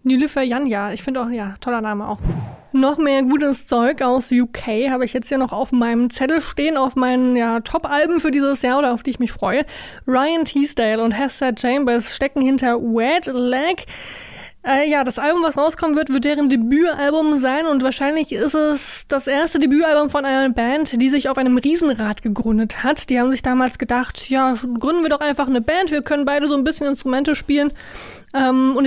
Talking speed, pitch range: 200 wpm, 250-295 Hz